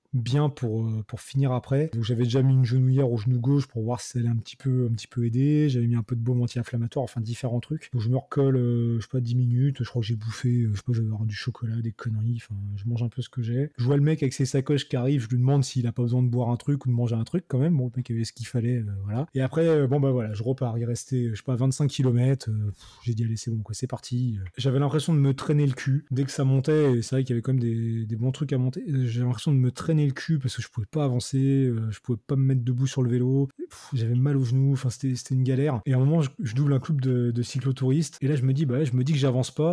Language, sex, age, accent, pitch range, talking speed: French, male, 20-39, French, 120-135 Hz, 320 wpm